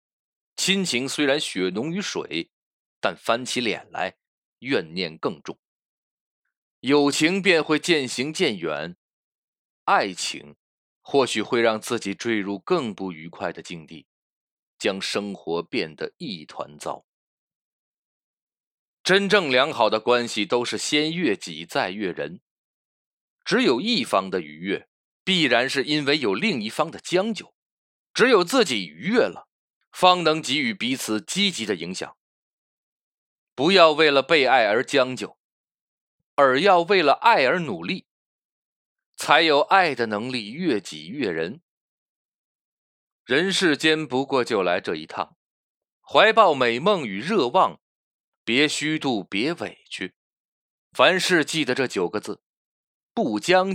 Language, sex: Chinese, male